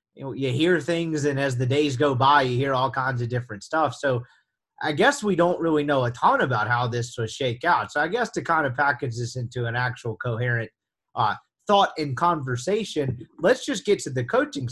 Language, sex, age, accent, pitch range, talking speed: English, male, 30-49, American, 120-155 Hz, 225 wpm